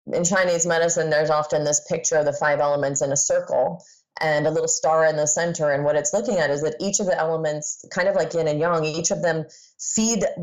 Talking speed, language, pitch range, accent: 240 wpm, English, 150-175 Hz, American